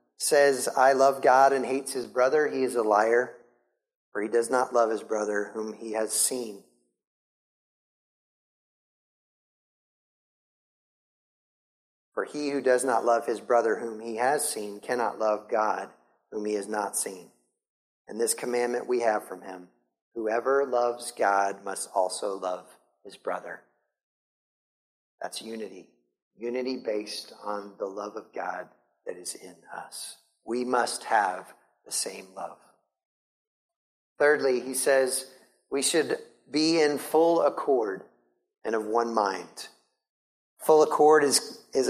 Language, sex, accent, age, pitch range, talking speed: English, male, American, 30-49, 105-135 Hz, 135 wpm